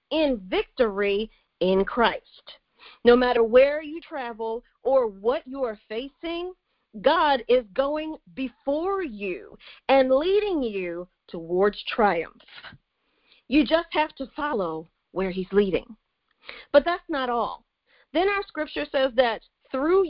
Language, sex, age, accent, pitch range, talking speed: English, female, 40-59, American, 225-310 Hz, 120 wpm